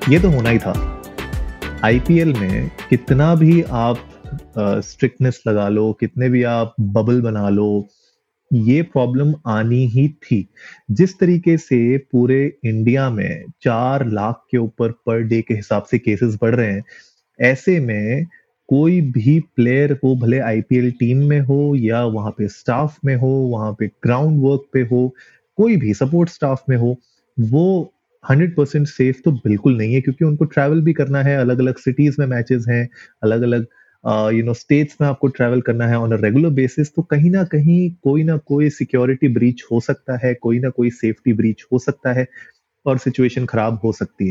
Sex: male